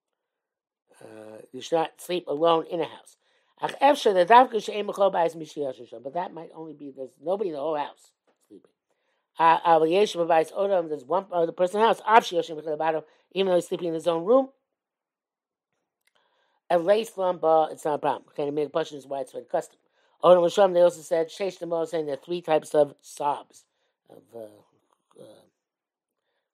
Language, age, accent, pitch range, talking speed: English, 60-79, American, 150-205 Hz, 160 wpm